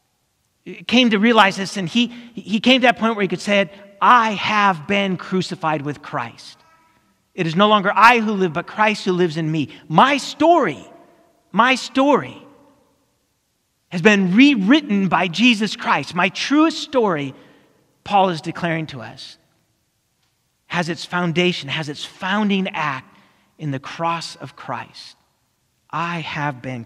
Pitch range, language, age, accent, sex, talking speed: 125-200 Hz, English, 40-59, American, male, 150 wpm